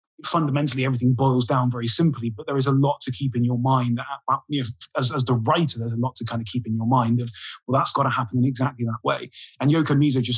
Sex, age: male, 30-49